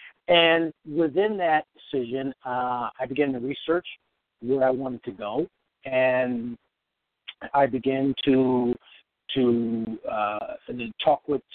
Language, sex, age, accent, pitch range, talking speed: English, male, 50-69, American, 120-150 Hz, 120 wpm